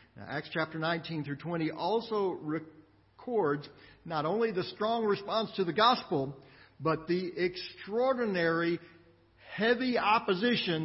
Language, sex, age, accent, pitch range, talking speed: English, male, 50-69, American, 150-220 Hz, 110 wpm